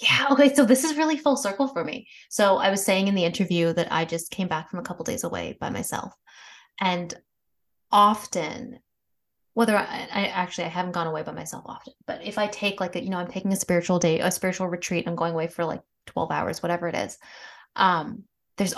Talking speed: 225 wpm